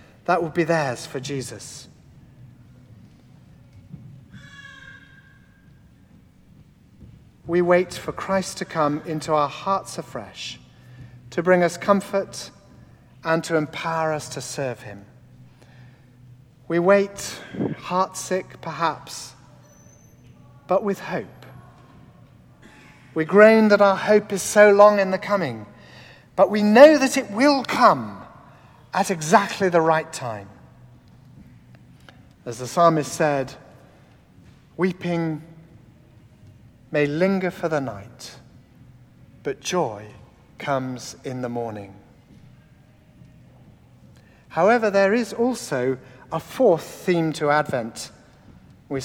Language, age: English, 40-59